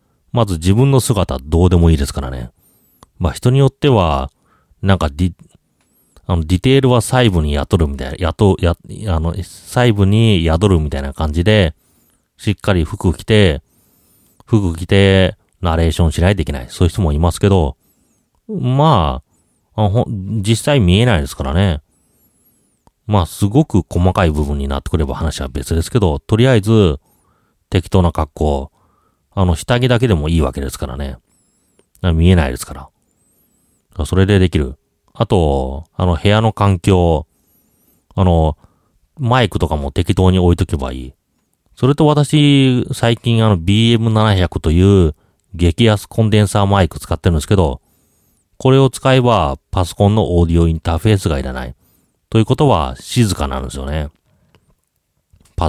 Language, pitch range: Japanese, 80-110 Hz